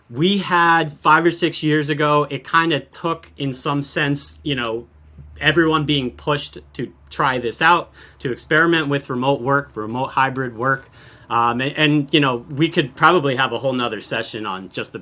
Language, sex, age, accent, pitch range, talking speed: English, male, 30-49, American, 115-145 Hz, 190 wpm